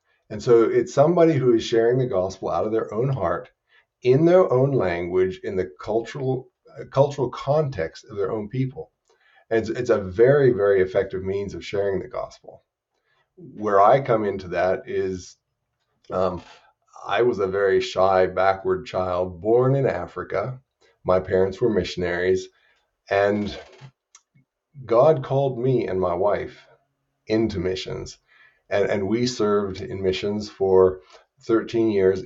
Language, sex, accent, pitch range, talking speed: English, male, American, 95-130 Hz, 145 wpm